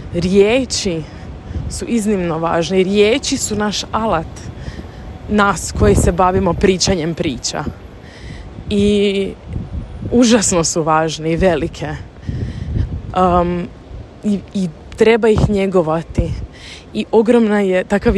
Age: 20-39